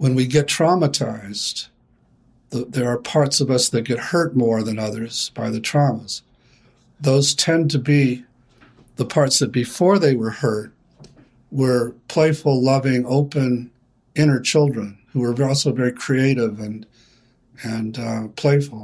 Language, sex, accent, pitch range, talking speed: English, male, American, 115-140 Hz, 145 wpm